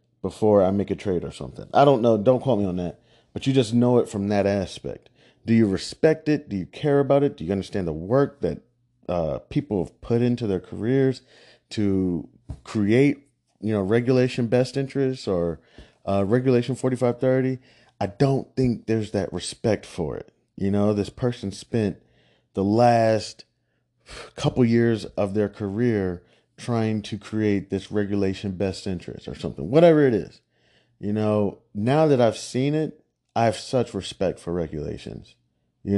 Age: 30-49